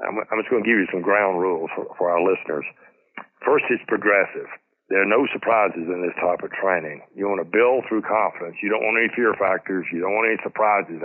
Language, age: English, 60-79